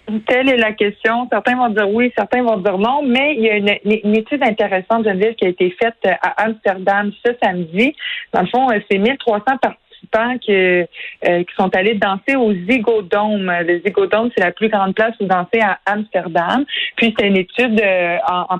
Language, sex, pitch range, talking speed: French, female, 185-230 Hz, 200 wpm